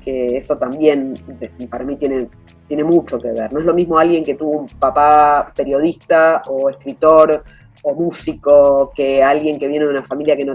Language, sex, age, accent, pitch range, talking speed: Spanish, female, 20-39, Argentinian, 125-165 Hz, 190 wpm